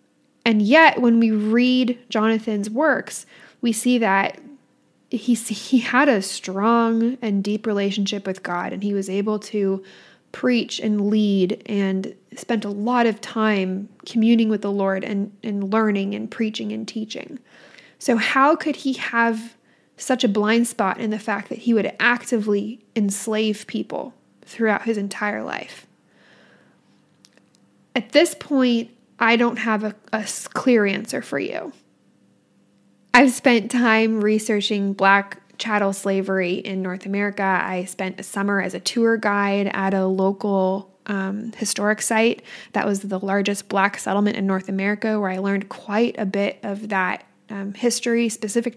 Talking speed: 150 wpm